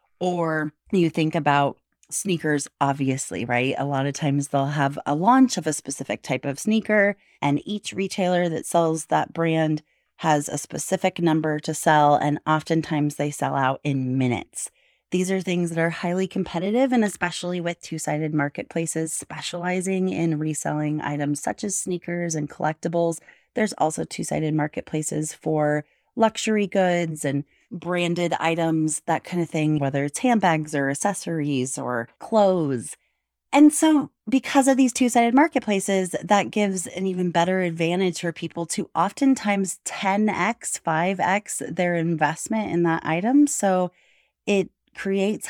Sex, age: female, 30-49